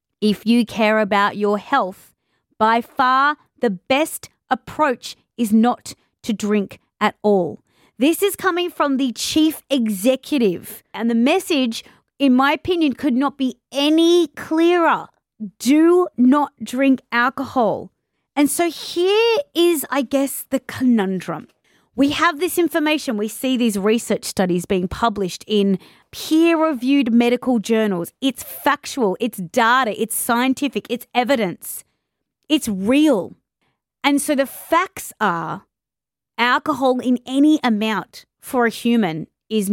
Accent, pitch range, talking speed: Australian, 220-285 Hz, 130 wpm